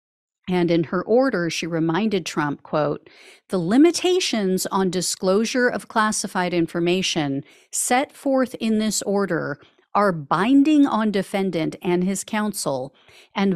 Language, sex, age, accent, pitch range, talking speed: English, female, 40-59, American, 170-220 Hz, 125 wpm